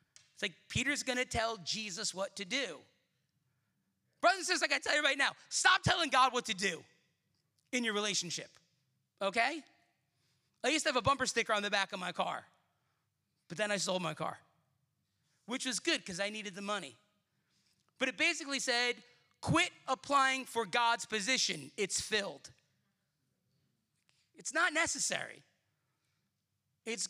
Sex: male